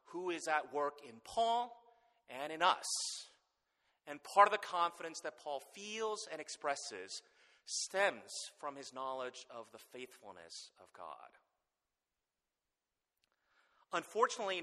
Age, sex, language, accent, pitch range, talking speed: 30-49, male, English, American, 150-200 Hz, 120 wpm